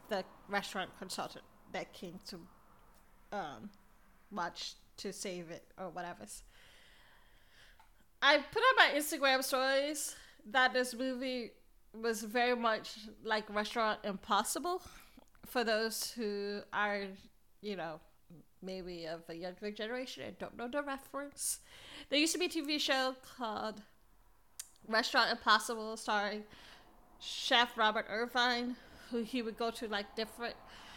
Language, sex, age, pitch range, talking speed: English, female, 30-49, 210-270 Hz, 125 wpm